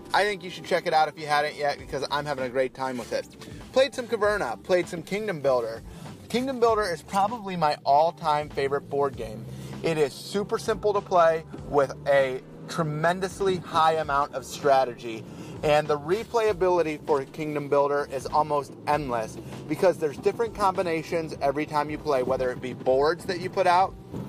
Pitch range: 140-180 Hz